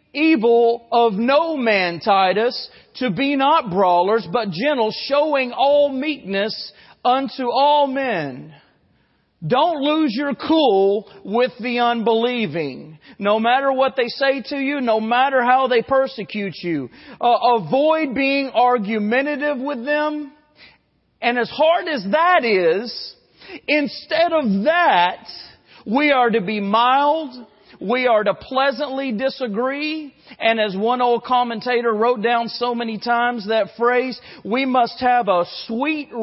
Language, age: English, 40-59